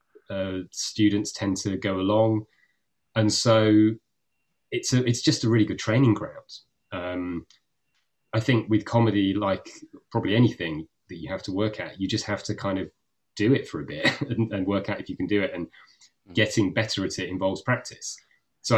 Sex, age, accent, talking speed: male, 30-49, British, 190 wpm